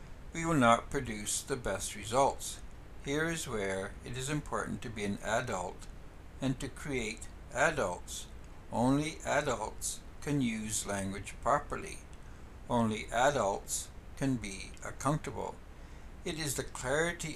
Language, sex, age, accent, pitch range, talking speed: English, male, 60-79, American, 100-135 Hz, 125 wpm